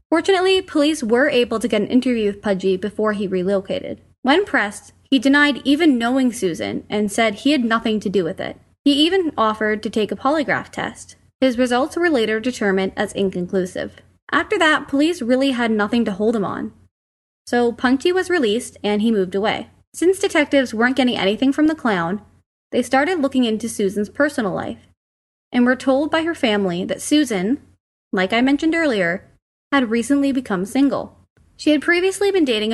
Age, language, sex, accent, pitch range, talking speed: 20-39, English, female, American, 210-285 Hz, 180 wpm